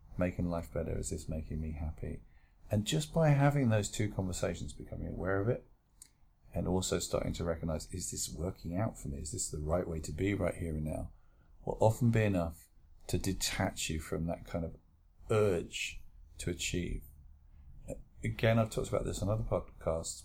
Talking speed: 185 wpm